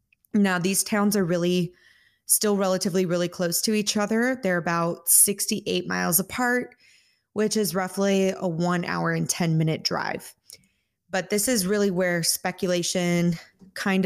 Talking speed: 145 wpm